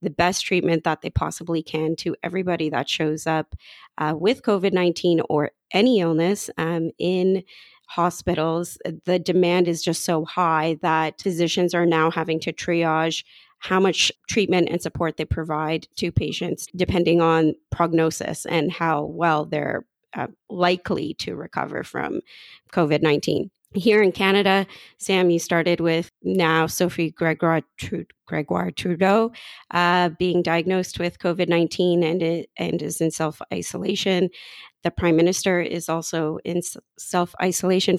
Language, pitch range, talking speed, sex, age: English, 165-185 Hz, 135 wpm, female, 30-49